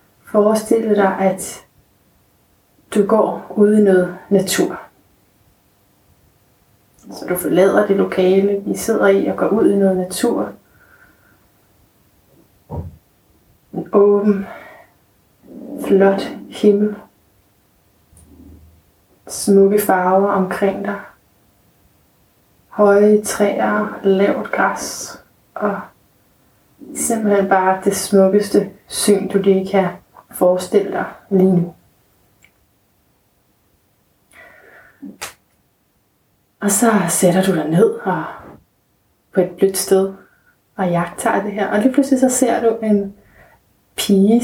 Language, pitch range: Danish, 175-205 Hz